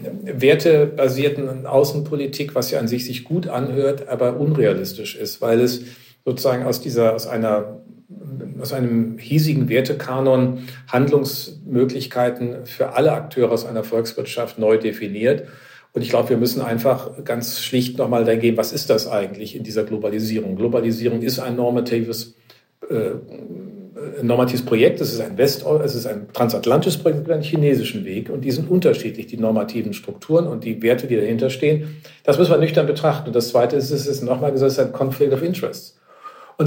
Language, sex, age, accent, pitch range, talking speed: German, male, 50-69, German, 120-150 Hz, 165 wpm